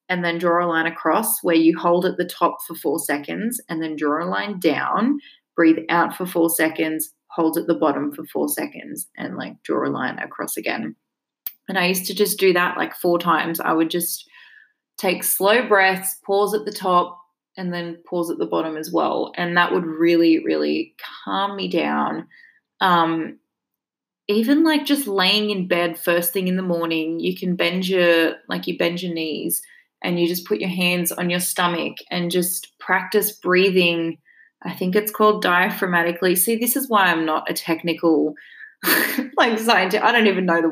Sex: female